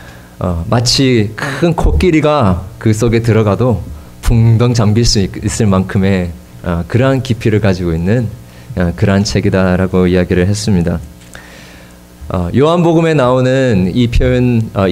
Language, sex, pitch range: Korean, male, 85-130 Hz